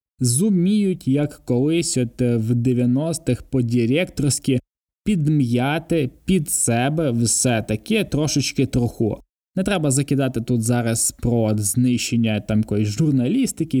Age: 20-39